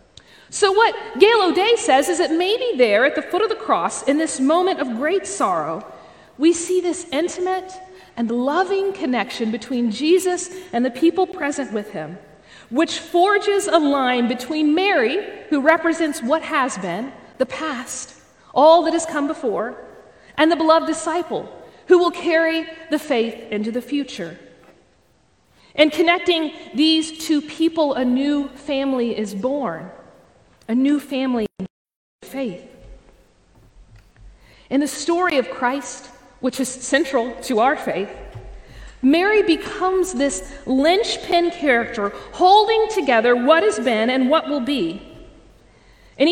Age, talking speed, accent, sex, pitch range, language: 40-59, 140 wpm, American, female, 250-345 Hz, English